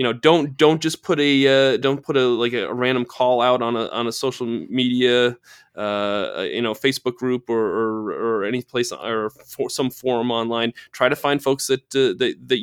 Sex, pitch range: male, 120-145 Hz